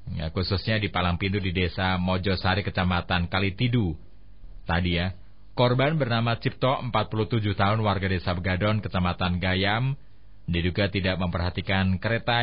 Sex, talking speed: male, 120 wpm